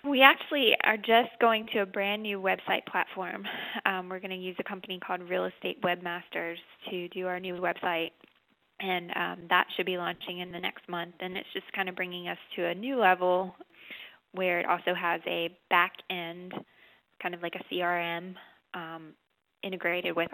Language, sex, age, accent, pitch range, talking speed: English, female, 20-39, American, 175-200 Hz, 185 wpm